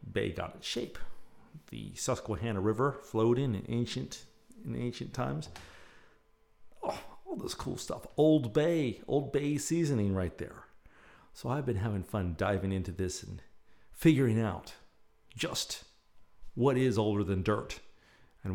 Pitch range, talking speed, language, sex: 105-150 Hz, 140 wpm, English, male